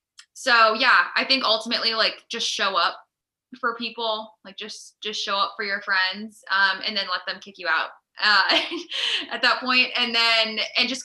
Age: 10-29